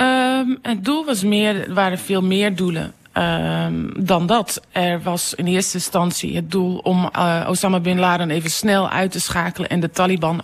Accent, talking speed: Dutch, 160 wpm